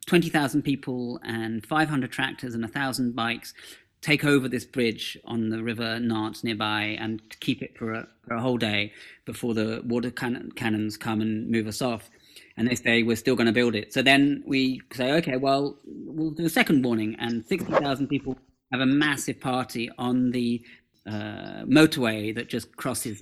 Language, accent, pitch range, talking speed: English, British, 115-145 Hz, 190 wpm